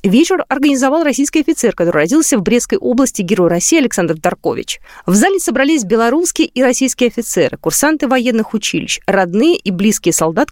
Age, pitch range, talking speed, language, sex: 20-39, 195-295 Hz, 155 wpm, Russian, female